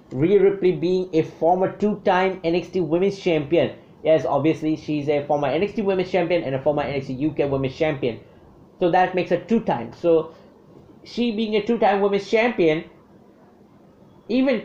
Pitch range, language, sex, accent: 135-180 Hz, English, male, Indian